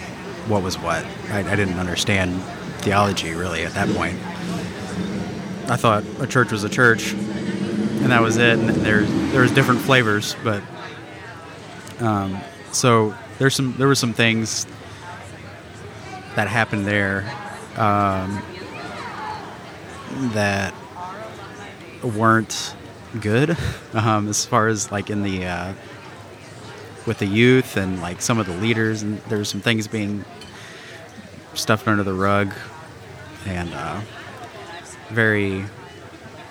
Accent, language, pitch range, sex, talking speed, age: American, English, 95-115 Hz, male, 120 wpm, 30-49